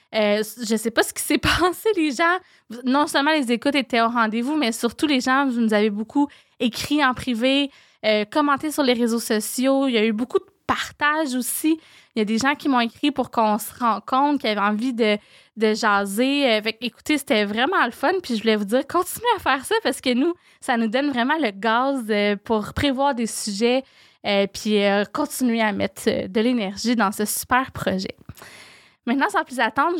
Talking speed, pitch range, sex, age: 210 wpm, 220-280 Hz, female, 20-39